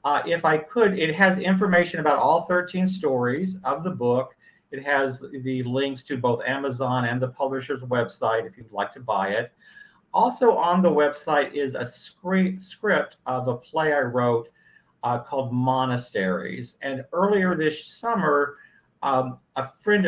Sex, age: male, 40-59